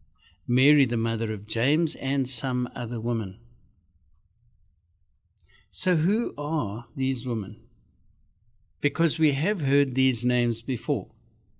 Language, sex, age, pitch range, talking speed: English, male, 60-79, 110-145 Hz, 110 wpm